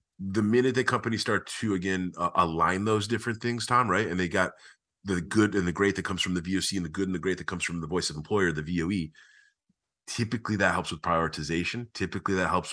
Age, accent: 30-49, American